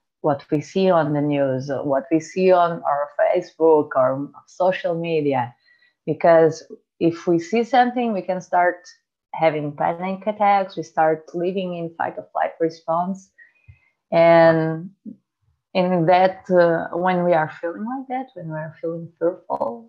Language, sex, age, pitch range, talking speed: English, female, 30-49, 160-185 Hz, 150 wpm